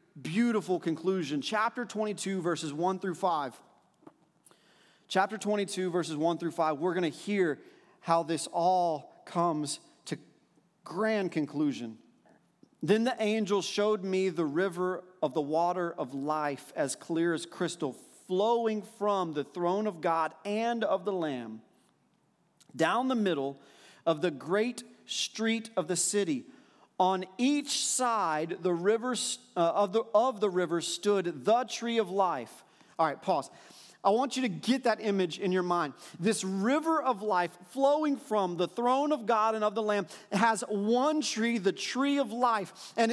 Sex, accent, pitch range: male, American, 175-235 Hz